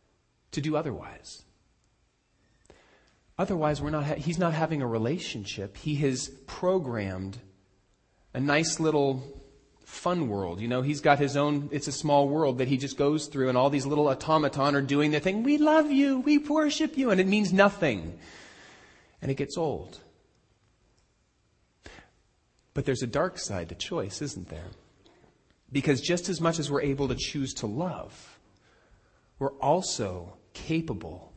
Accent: American